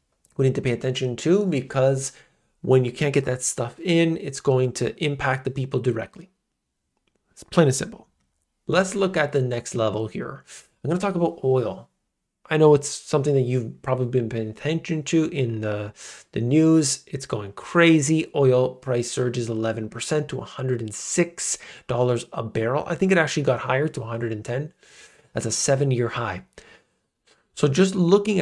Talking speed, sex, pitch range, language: 165 wpm, male, 120-155 Hz, English